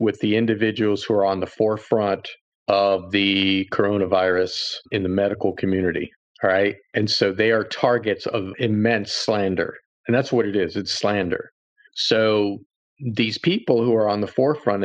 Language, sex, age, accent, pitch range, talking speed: English, male, 50-69, American, 105-120 Hz, 160 wpm